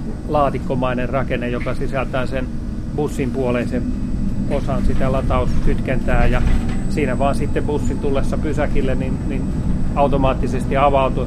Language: Finnish